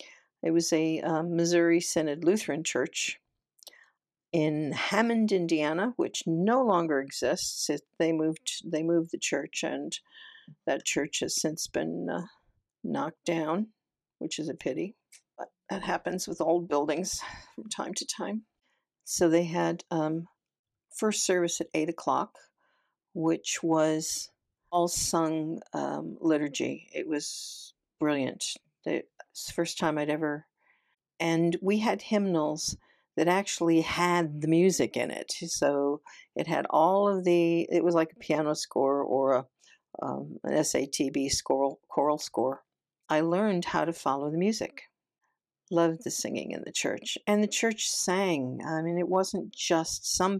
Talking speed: 145 wpm